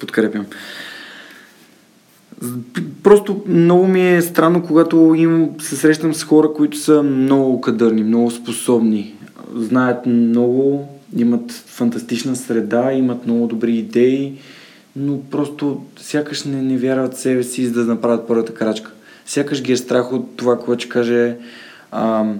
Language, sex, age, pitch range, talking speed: Bulgarian, male, 20-39, 115-135 Hz, 135 wpm